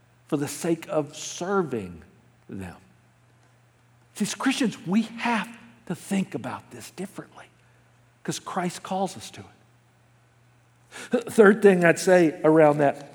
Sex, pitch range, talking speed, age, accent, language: male, 120-185 Hz, 130 wpm, 60-79, American, English